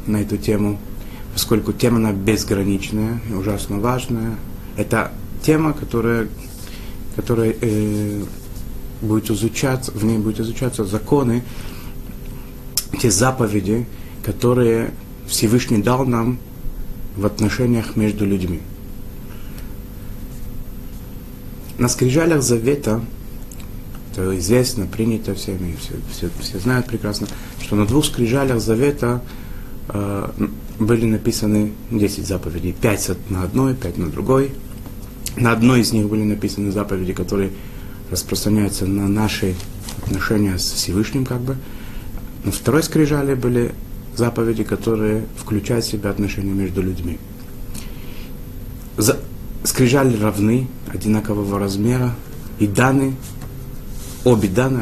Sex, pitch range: male, 100-125 Hz